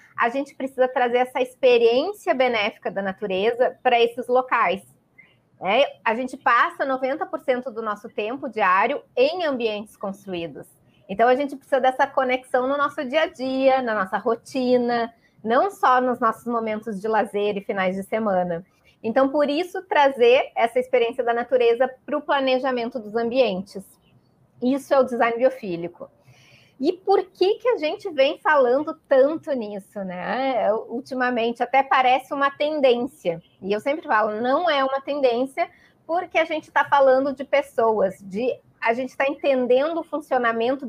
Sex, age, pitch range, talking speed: female, 20-39, 225-285 Hz, 155 wpm